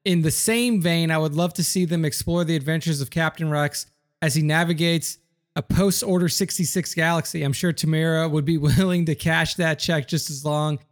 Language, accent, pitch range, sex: English, American, 140-170 Hz, male